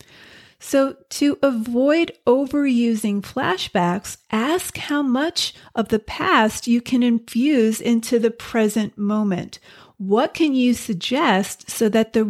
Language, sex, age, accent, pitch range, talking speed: English, female, 40-59, American, 205-260 Hz, 120 wpm